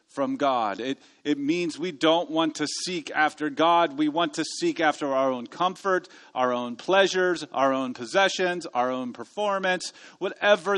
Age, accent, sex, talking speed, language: 40-59, American, male, 165 wpm, English